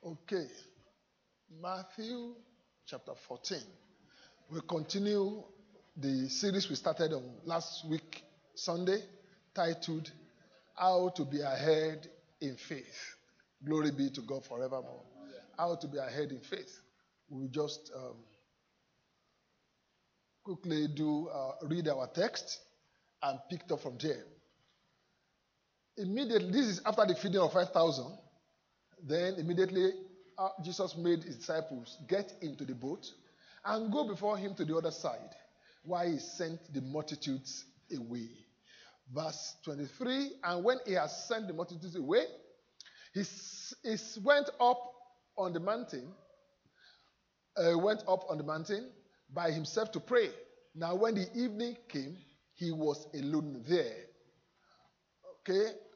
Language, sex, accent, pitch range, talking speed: English, male, Nigerian, 155-205 Hz, 125 wpm